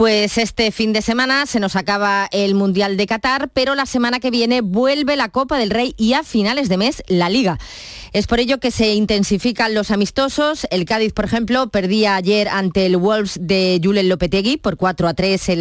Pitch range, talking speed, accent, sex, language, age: 185-225 Hz, 210 wpm, Spanish, female, Spanish, 20-39